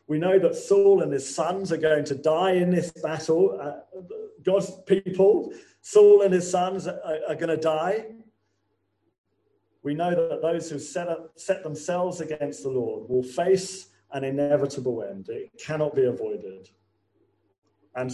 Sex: male